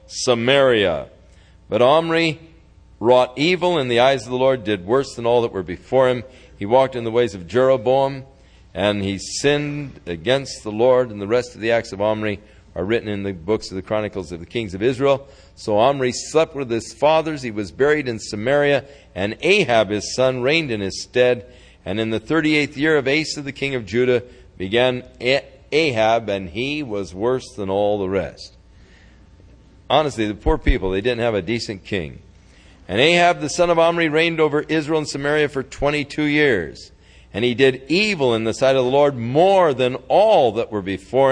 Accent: American